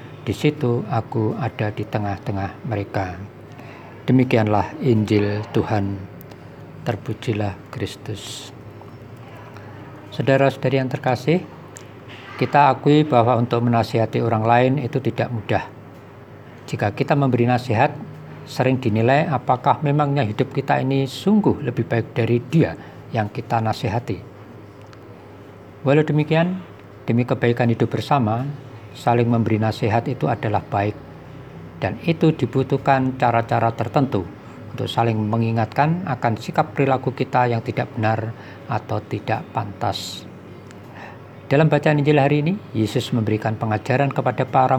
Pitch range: 110-135 Hz